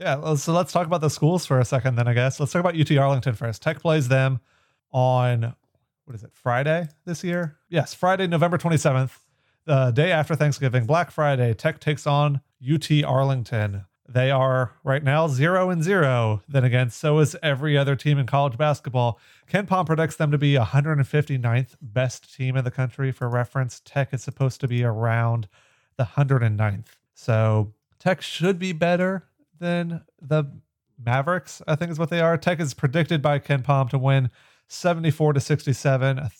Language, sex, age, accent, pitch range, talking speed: English, male, 30-49, American, 125-150 Hz, 175 wpm